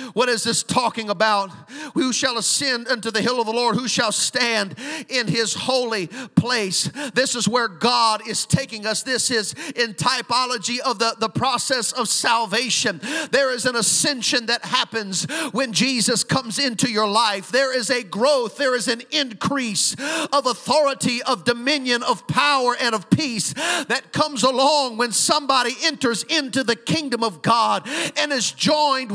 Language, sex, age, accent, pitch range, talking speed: English, male, 50-69, American, 235-290 Hz, 165 wpm